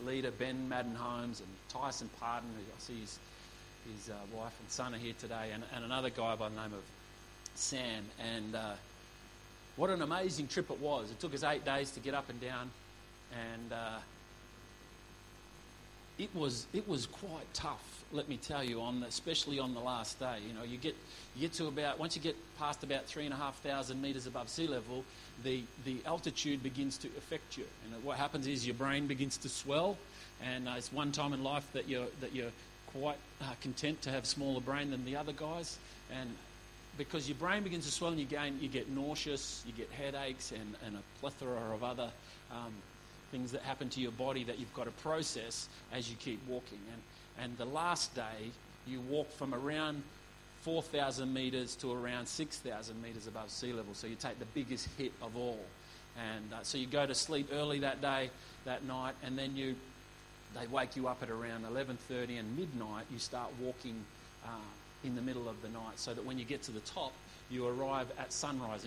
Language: English